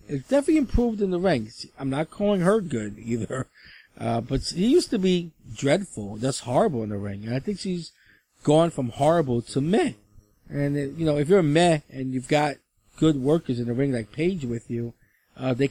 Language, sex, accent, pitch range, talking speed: English, male, American, 120-160 Hz, 205 wpm